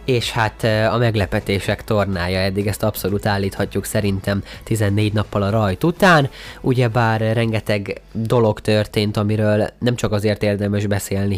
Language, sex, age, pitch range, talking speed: Hungarian, male, 20-39, 100-130 Hz, 130 wpm